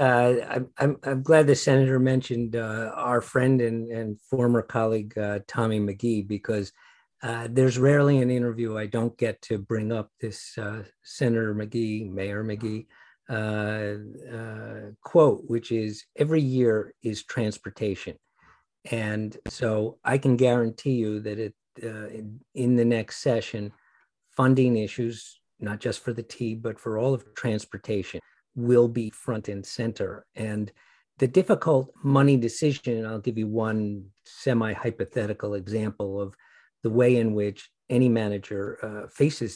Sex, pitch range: male, 110-125 Hz